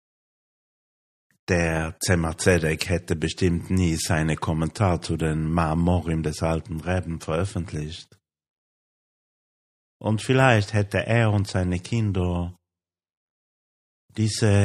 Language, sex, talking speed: German, male, 95 wpm